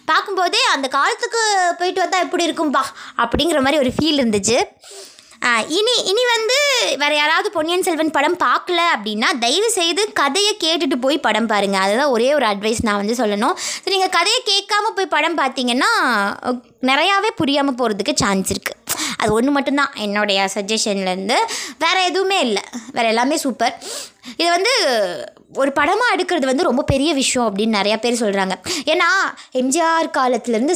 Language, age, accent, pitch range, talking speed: Tamil, 20-39, native, 235-330 Hz, 140 wpm